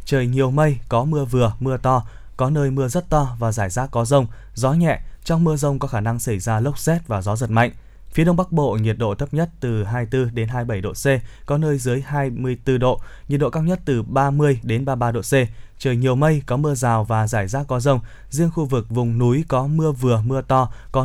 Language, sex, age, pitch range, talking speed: Vietnamese, male, 20-39, 110-140 Hz, 240 wpm